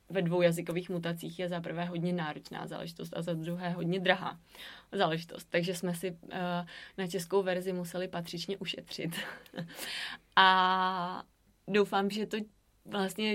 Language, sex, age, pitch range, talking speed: Czech, female, 20-39, 175-195 Hz, 135 wpm